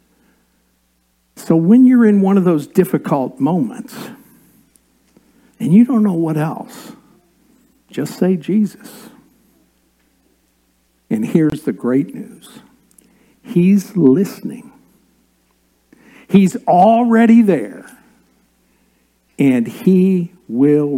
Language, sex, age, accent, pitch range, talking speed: English, male, 60-79, American, 140-230 Hz, 90 wpm